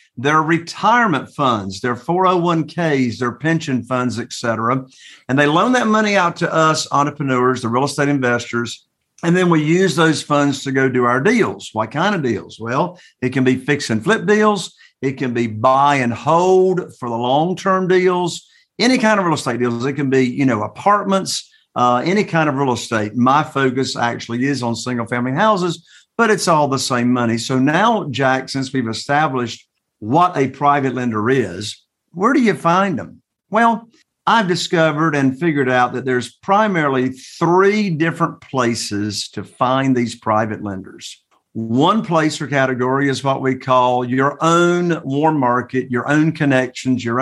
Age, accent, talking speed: 50-69, American, 180 wpm